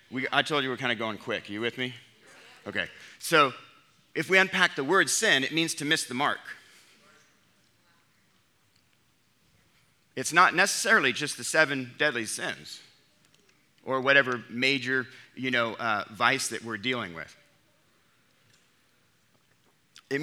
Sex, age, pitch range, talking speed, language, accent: male, 40-59, 130-175 Hz, 140 wpm, English, American